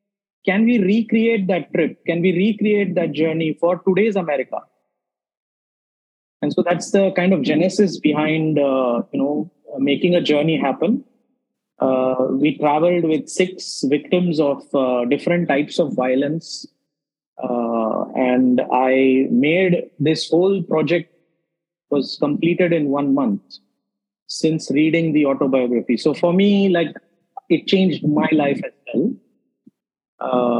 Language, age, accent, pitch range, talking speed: English, 20-39, Indian, 150-195 Hz, 130 wpm